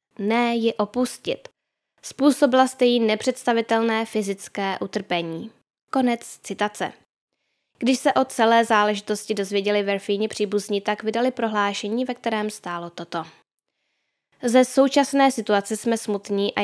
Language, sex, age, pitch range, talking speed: Czech, female, 10-29, 200-240 Hz, 115 wpm